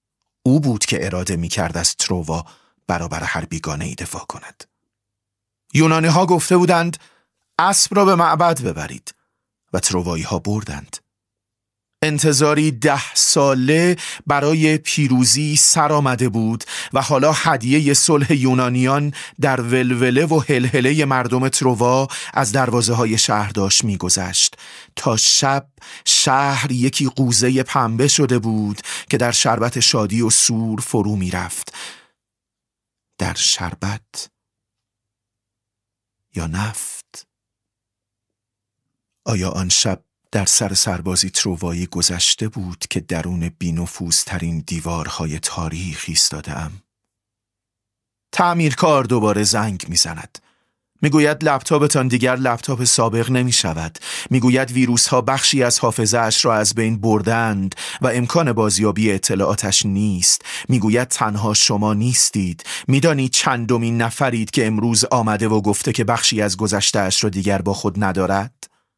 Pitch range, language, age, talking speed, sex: 100-130 Hz, Persian, 30-49, 115 wpm, male